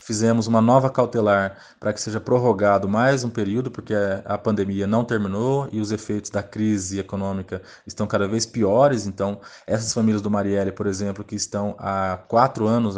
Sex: male